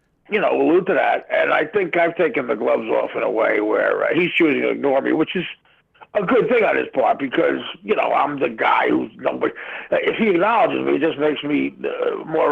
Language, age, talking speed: English, 50-69, 235 wpm